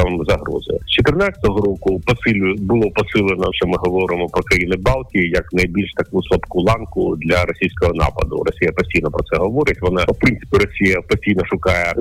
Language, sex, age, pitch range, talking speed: Ukrainian, male, 40-59, 95-110 Hz, 155 wpm